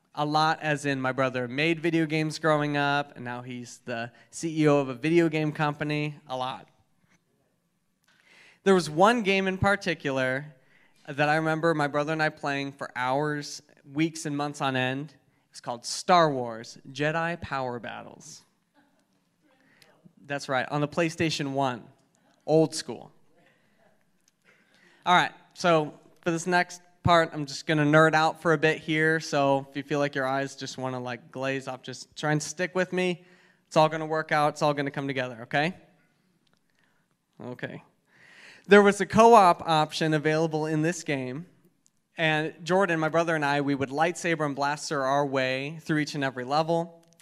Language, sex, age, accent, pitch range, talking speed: English, male, 20-39, American, 140-165 Hz, 170 wpm